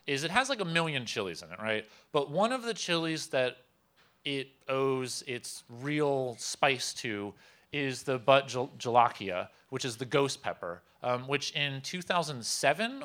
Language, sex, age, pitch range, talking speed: English, male, 30-49, 115-165 Hz, 160 wpm